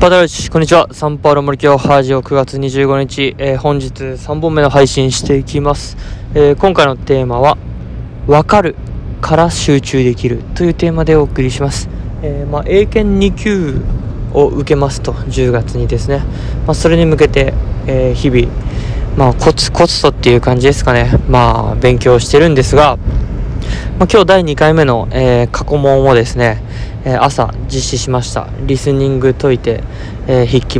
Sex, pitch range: male, 125-160 Hz